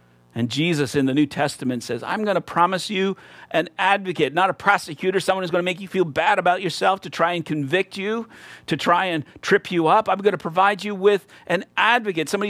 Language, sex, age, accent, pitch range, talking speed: English, male, 50-69, American, 130-200 Hz, 225 wpm